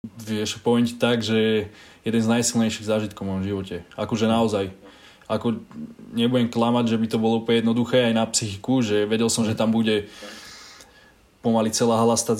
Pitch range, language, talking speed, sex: 105-120 Hz, Slovak, 170 wpm, male